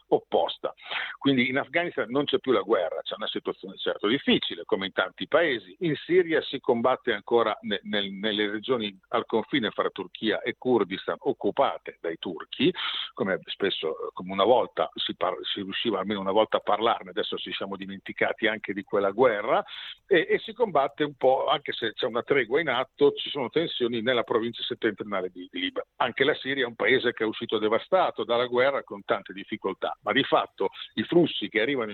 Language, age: Italian, 50-69